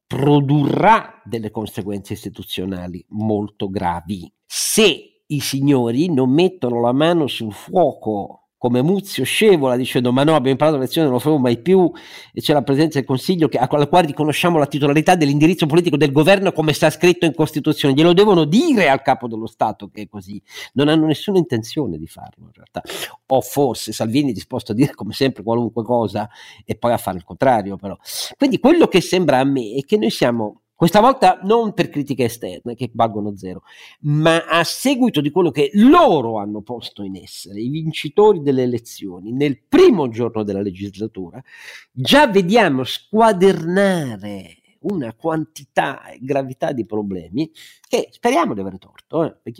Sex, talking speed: male, 170 wpm